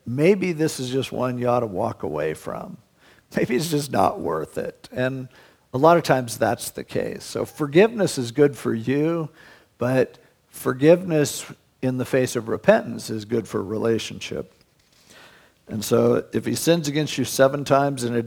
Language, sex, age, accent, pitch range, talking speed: English, male, 50-69, American, 120-155 Hz, 175 wpm